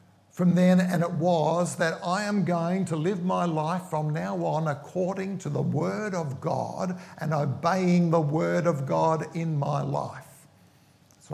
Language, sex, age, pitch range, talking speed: English, male, 50-69, 155-195 Hz, 170 wpm